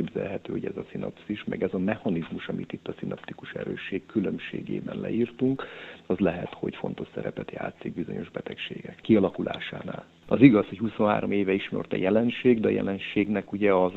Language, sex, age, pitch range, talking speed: Hungarian, male, 50-69, 90-110 Hz, 160 wpm